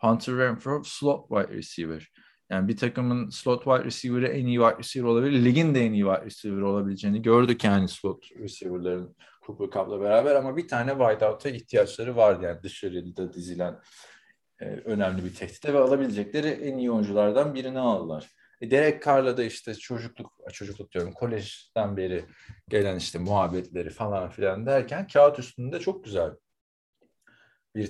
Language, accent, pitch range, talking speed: Turkish, native, 105-140 Hz, 155 wpm